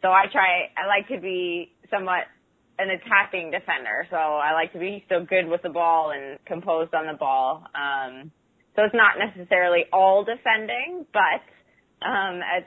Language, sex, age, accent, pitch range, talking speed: English, female, 20-39, American, 155-190 Hz, 175 wpm